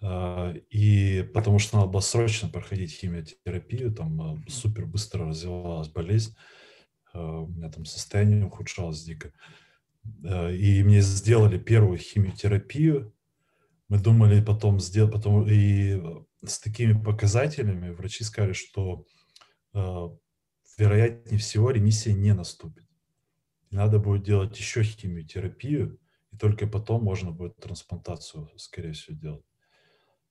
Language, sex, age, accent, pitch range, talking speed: Russian, male, 20-39, native, 90-110 Hz, 110 wpm